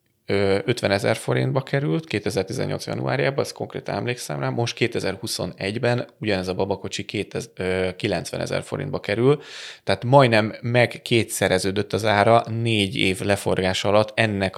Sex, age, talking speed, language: male, 20-39, 120 wpm, Hungarian